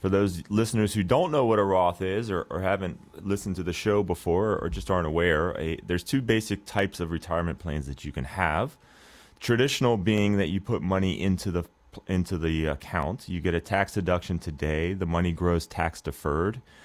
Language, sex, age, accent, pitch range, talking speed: English, male, 30-49, American, 80-100 Hz, 200 wpm